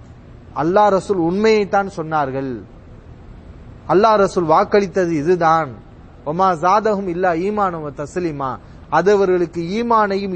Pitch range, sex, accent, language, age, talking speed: 160-210 Hz, male, Indian, English, 30-49, 95 wpm